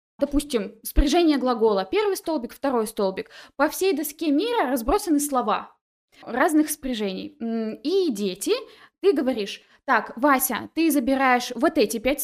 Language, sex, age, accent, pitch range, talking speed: Russian, female, 20-39, native, 225-290 Hz, 130 wpm